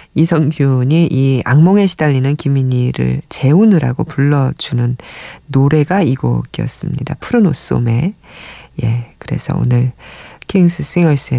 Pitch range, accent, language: 130-190 Hz, native, Korean